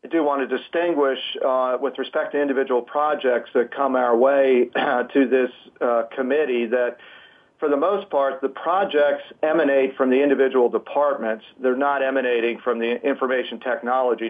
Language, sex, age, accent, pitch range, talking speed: English, male, 40-59, American, 125-140 Hz, 160 wpm